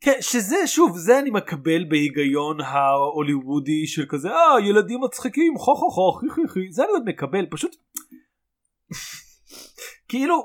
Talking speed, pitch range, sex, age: 125 wpm, 150-235 Hz, male, 30-49